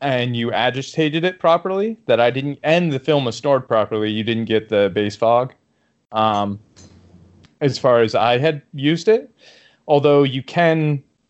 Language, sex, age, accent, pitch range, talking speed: English, male, 20-39, American, 110-135 Hz, 165 wpm